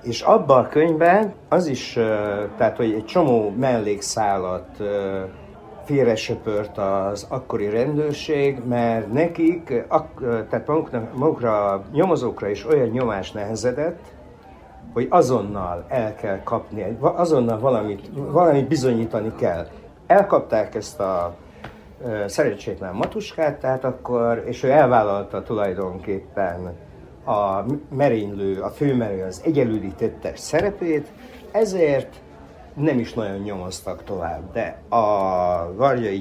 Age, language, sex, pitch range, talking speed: 60-79, Hungarian, male, 100-140 Hz, 105 wpm